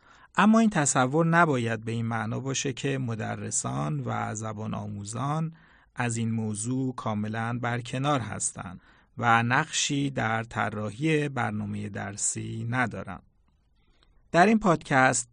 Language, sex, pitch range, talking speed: Persian, male, 110-140 Hz, 115 wpm